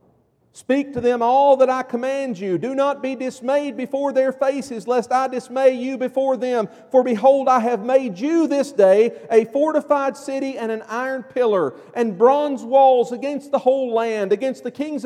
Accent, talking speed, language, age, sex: American, 185 wpm, English, 40-59, male